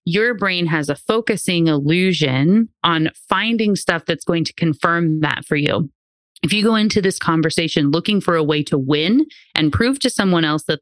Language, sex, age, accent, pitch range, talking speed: English, female, 30-49, American, 155-190 Hz, 190 wpm